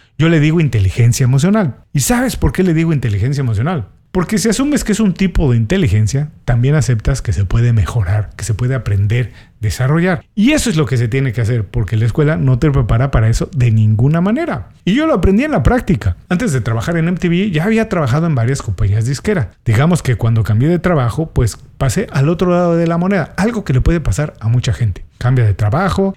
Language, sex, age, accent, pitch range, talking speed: Spanish, male, 40-59, Mexican, 120-175 Hz, 225 wpm